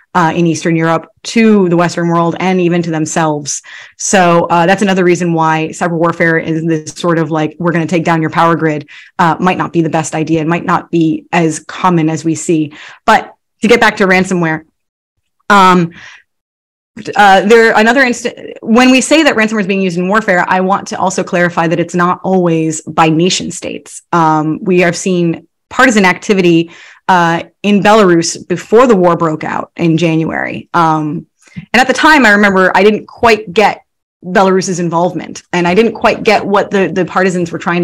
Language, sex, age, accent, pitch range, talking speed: English, female, 20-39, American, 165-195 Hz, 195 wpm